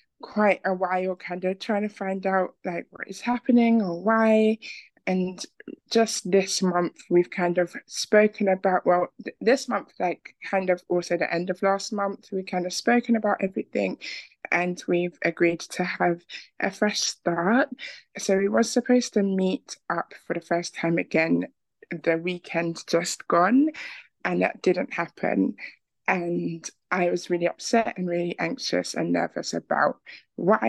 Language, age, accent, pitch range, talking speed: English, 20-39, British, 175-205 Hz, 160 wpm